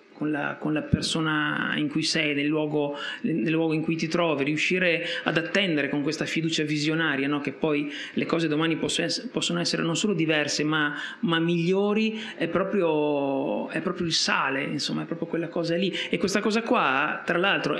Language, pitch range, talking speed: Italian, 155-195 Hz, 170 wpm